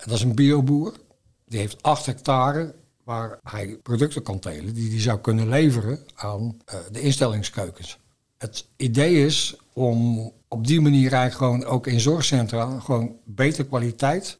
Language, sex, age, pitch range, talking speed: Dutch, male, 60-79, 115-140 Hz, 160 wpm